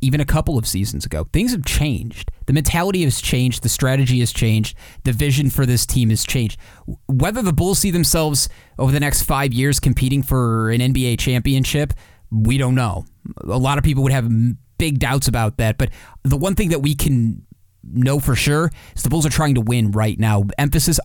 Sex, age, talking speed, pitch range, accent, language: male, 30-49, 205 wpm, 115-145 Hz, American, English